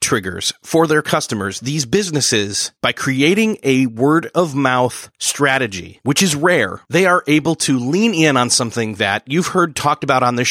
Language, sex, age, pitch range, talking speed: English, male, 30-49, 115-160 Hz, 175 wpm